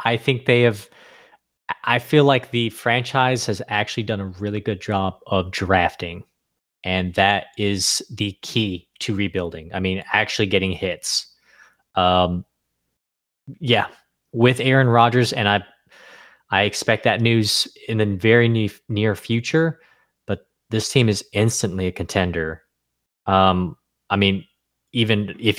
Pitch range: 95-115 Hz